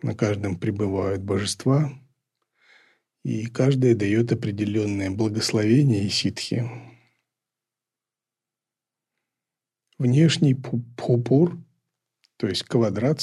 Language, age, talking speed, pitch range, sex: Russian, 40-59, 75 wpm, 110-135 Hz, male